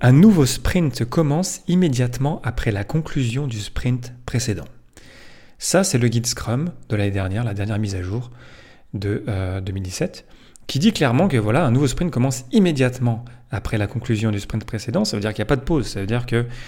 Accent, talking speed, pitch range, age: French, 200 wpm, 105-130 Hz, 30-49